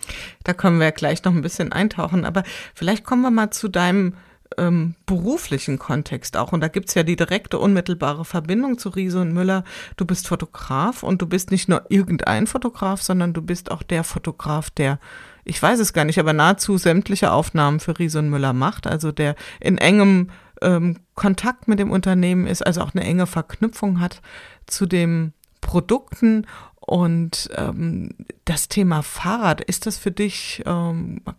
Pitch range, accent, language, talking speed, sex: 165-200 Hz, German, German, 180 wpm, female